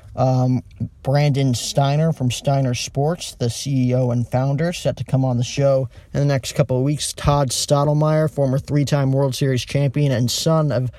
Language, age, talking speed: English, 20-39, 175 wpm